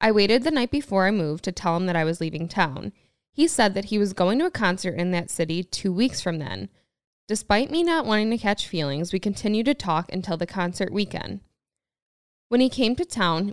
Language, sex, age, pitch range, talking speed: English, female, 10-29, 170-215 Hz, 225 wpm